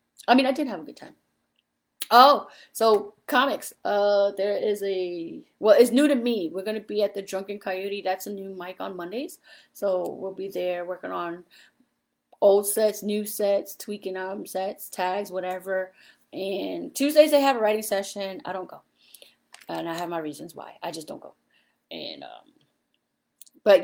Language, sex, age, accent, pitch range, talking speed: English, female, 30-49, American, 180-220 Hz, 180 wpm